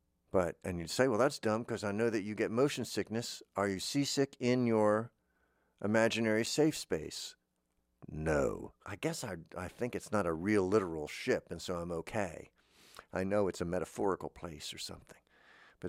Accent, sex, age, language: American, male, 50-69, English